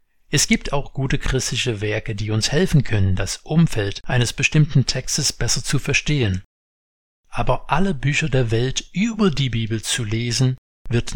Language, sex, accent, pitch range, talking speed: German, male, German, 110-150 Hz, 155 wpm